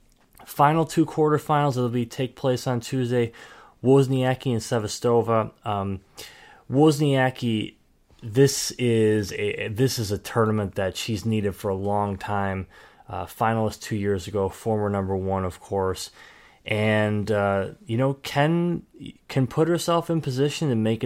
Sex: male